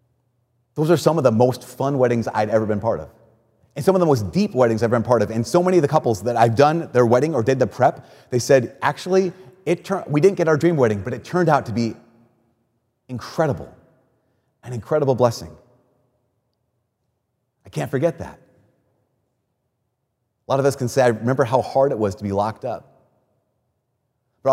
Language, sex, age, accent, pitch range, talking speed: English, male, 30-49, American, 110-130 Hz, 200 wpm